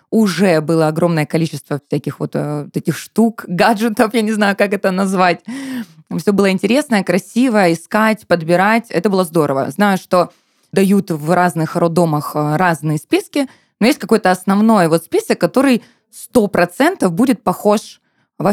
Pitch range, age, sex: 170-235 Hz, 20-39, female